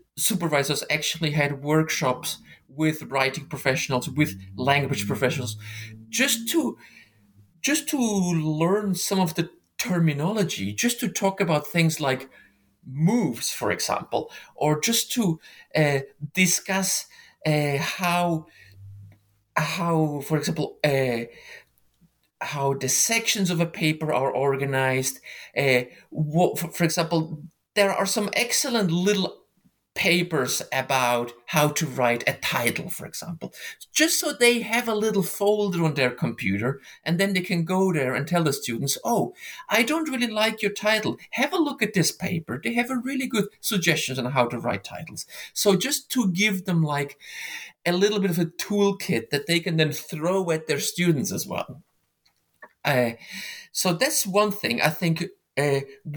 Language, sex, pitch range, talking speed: English, male, 140-200 Hz, 150 wpm